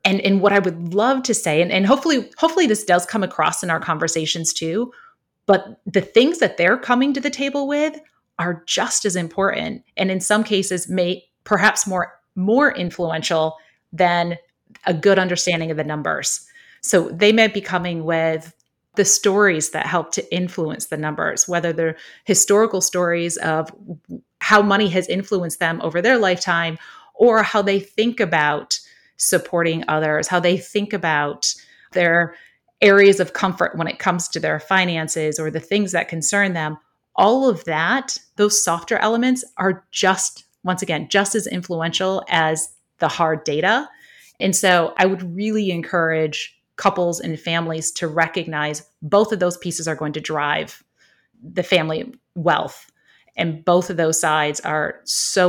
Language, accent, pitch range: English, American, 165-205 Hz